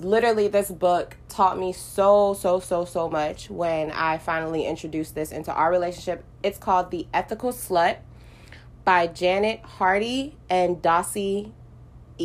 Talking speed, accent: 135 wpm, American